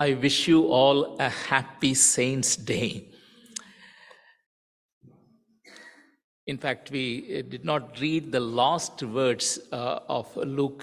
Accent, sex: Indian, male